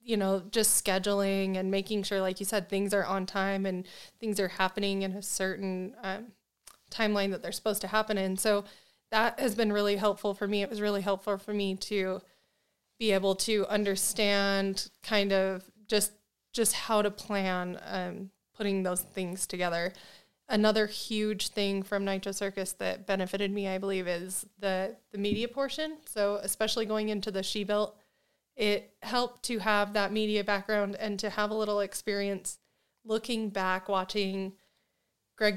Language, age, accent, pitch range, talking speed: English, 20-39, American, 195-215 Hz, 170 wpm